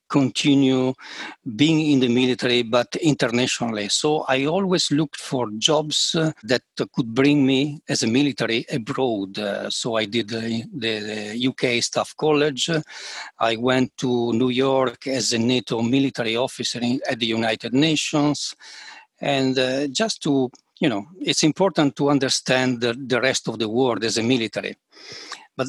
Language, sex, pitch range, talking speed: English, male, 120-145 Hz, 150 wpm